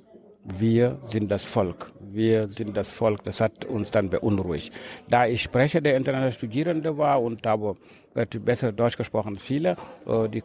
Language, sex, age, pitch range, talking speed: German, male, 60-79, 105-130 Hz, 160 wpm